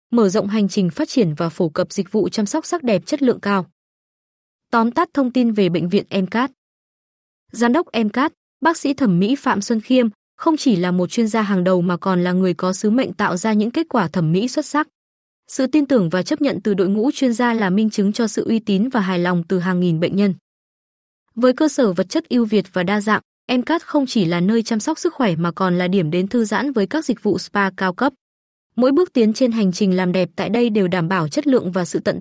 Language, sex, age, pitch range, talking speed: Vietnamese, female, 20-39, 185-250 Hz, 255 wpm